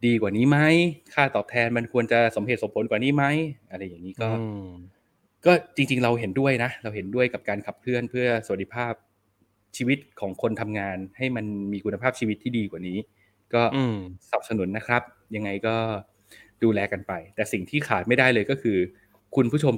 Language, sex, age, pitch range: Thai, male, 20-39, 100-125 Hz